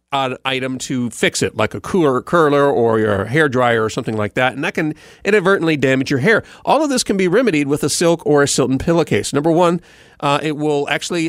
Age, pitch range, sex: 40-59, 120-160 Hz, male